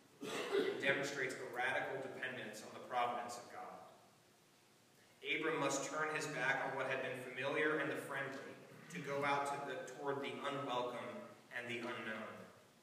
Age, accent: 30-49, American